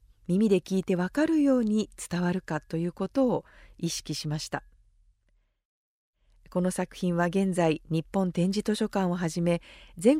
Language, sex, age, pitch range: Japanese, female, 40-59, 175-235 Hz